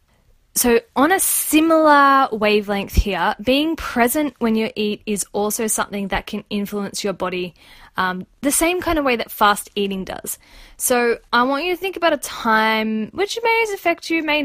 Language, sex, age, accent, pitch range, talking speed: English, female, 10-29, Australian, 205-270 Hz, 180 wpm